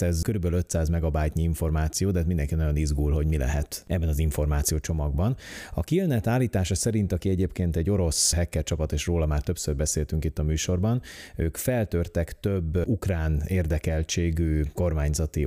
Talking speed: 155 wpm